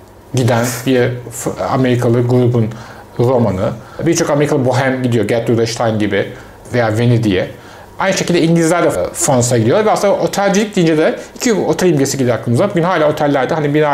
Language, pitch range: Turkish, 120-155 Hz